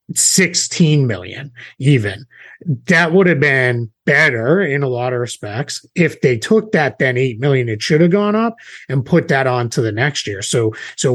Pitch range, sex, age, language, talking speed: 115-160 Hz, male, 30-49, English, 190 wpm